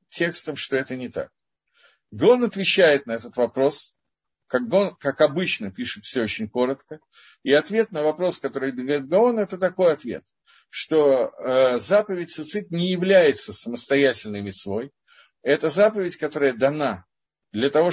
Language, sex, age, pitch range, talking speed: Russian, male, 50-69, 125-180 Hz, 145 wpm